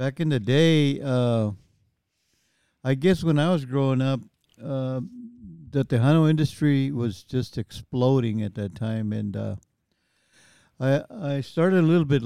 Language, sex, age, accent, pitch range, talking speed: English, male, 60-79, American, 115-145 Hz, 145 wpm